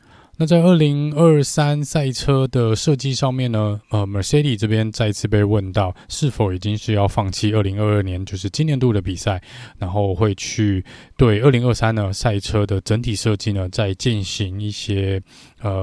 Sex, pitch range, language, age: male, 100-125 Hz, Chinese, 20-39